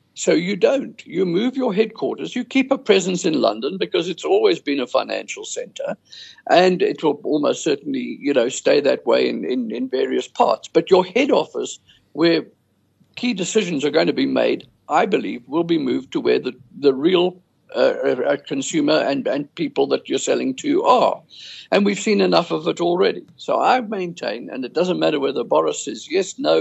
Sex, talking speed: male, 195 wpm